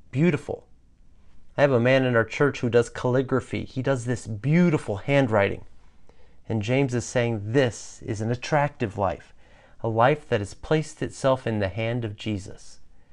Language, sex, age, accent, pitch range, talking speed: English, male, 40-59, American, 105-140 Hz, 165 wpm